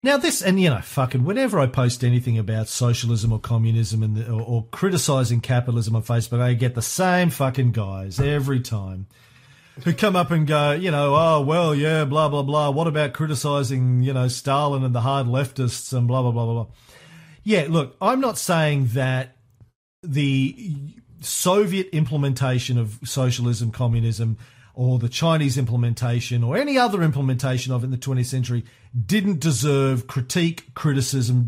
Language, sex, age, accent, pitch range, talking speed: English, male, 40-59, Australian, 120-150 Hz, 170 wpm